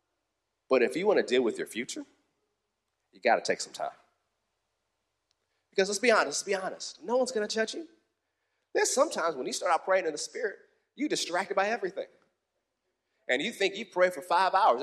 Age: 30-49